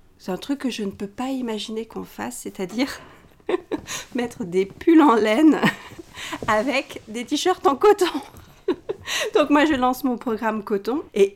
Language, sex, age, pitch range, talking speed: French, female, 40-59, 200-265 Hz, 160 wpm